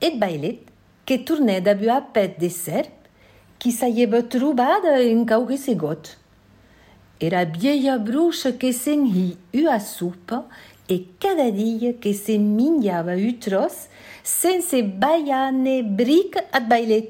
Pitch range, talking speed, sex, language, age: 215-300 Hz, 135 wpm, female, French, 60-79